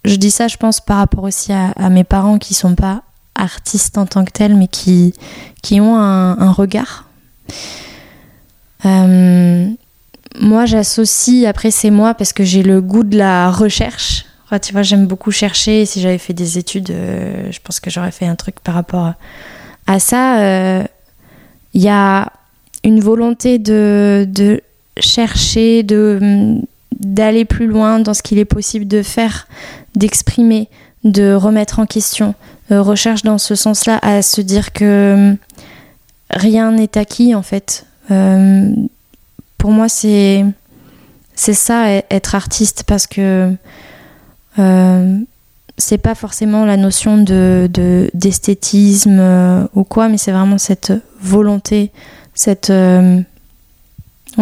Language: French